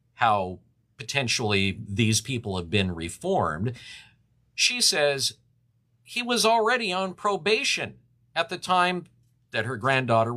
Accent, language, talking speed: American, English, 115 wpm